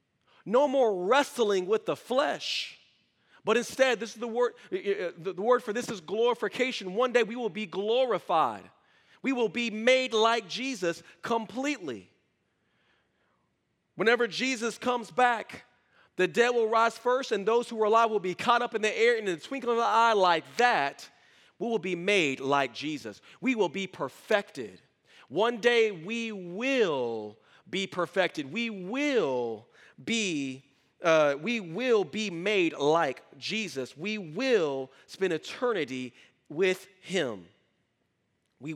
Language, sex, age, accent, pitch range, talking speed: English, male, 40-59, American, 175-240 Hz, 145 wpm